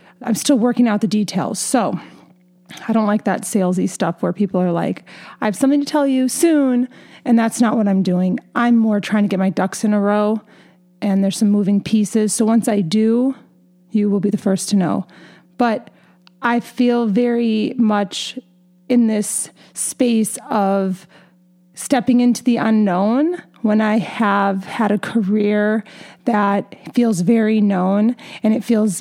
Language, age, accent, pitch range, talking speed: English, 30-49, American, 195-240 Hz, 170 wpm